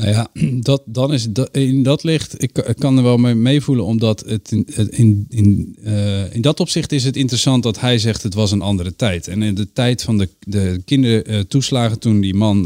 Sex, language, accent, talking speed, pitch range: male, Dutch, Dutch, 230 wpm, 95-115 Hz